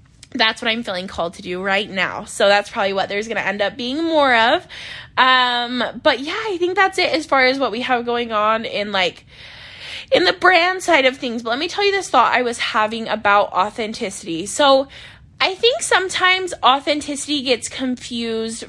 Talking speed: 200 wpm